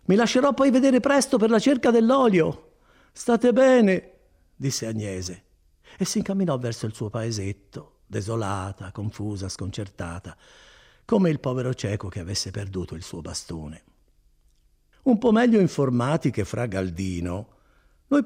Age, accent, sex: 50-69, native, male